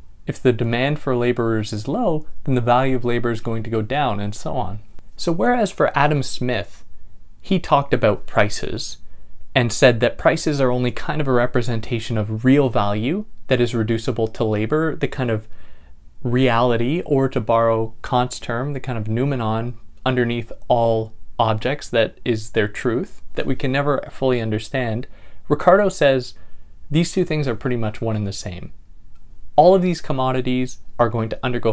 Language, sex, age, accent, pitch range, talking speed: English, male, 20-39, American, 105-130 Hz, 175 wpm